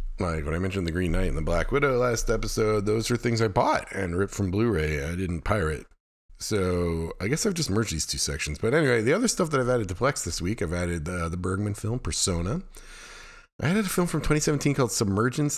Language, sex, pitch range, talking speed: English, male, 90-115 Hz, 235 wpm